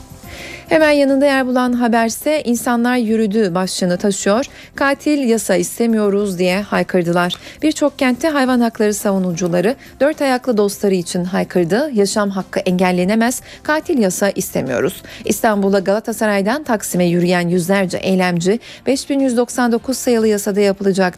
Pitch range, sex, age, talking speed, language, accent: 190-255 Hz, female, 40-59, 115 wpm, Turkish, native